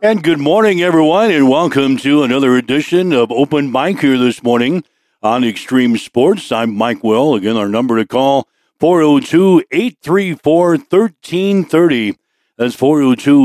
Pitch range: 120-145 Hz